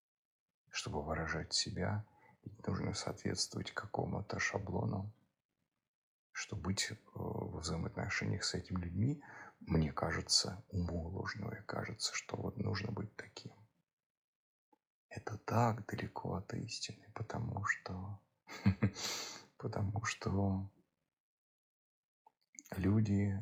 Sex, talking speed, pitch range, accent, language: male, 85 wpm, 90-105 Hz, native, Russian